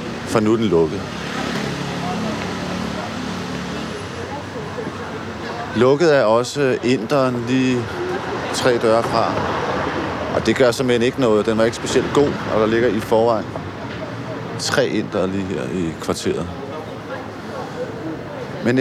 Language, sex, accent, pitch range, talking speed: Danish, male, native, 110-130 Hz, 120 wpm